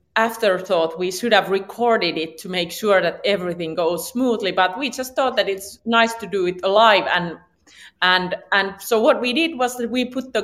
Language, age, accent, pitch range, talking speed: English, 30-49, Finnish, 180-230 Hz, 205 wpm